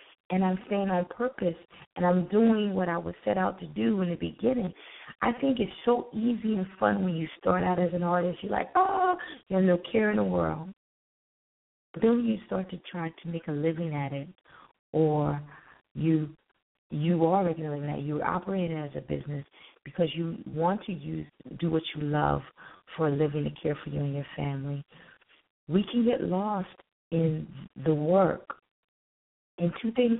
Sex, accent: female, American